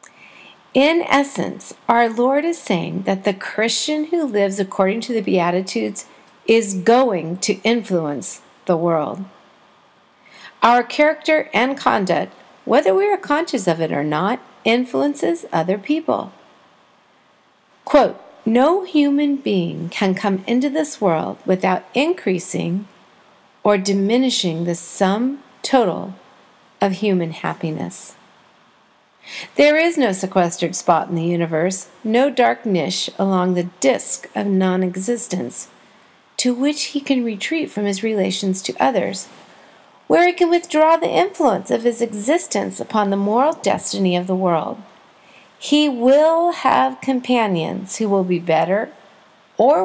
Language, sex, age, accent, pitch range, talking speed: English, female, 50-69, American, 185-270 Hz, 130 wpm